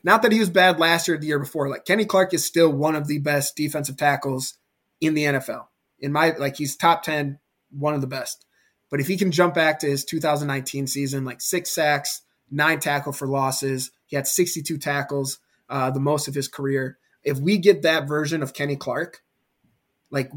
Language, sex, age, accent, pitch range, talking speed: English, male, 20-39, American, 140-160 Hz, 210 wpm